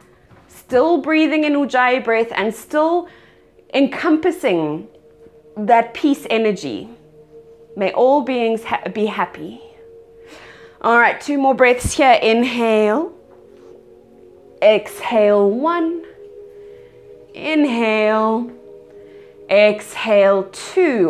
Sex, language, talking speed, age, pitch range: female, English, 80 wpm, 20-39, 225-355 Hz